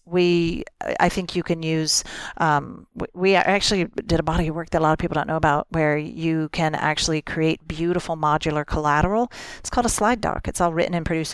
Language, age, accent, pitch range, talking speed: English, 40-59, American, 155-190 Hz, 210 wpm